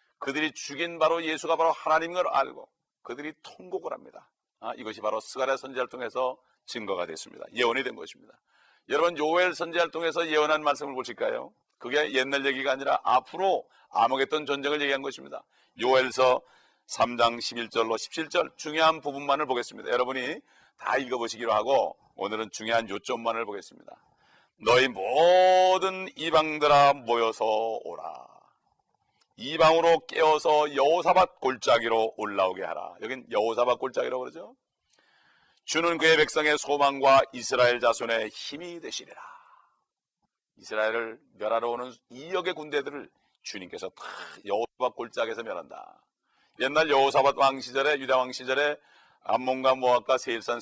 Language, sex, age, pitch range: Korean, male, 40-59, 115-155 Hz